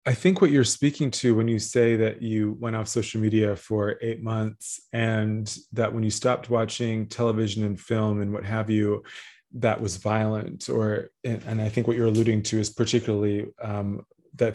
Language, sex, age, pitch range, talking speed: English, male, 20-39, 105-120 Hz, 190 wpm